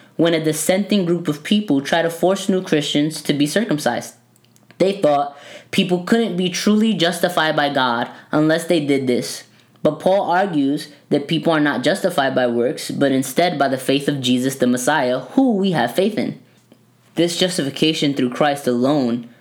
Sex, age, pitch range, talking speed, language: female, 10-29, 135-170 Hz, 175 wpm, English